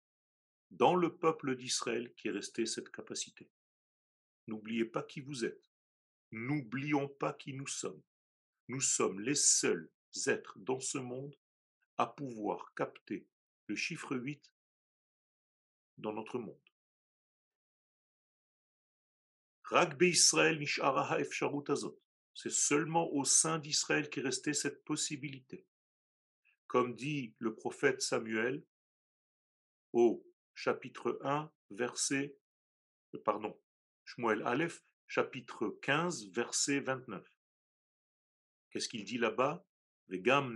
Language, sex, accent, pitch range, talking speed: French, male, French, 125-155 Hz, 105 wpm